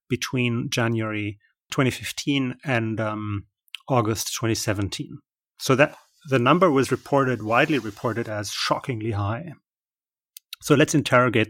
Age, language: 30-49, English